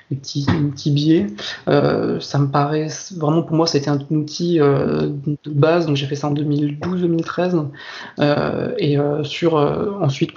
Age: 20-39